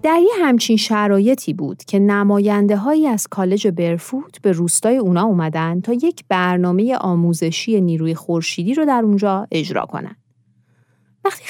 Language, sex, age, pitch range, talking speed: Persian, female, 30-49, 170-235 Hz, 130 wpm